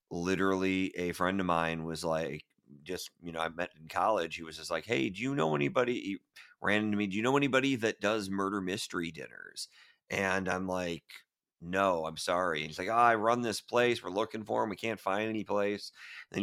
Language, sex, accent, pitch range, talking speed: English, male, American, 90-110 Hz, 220 wpm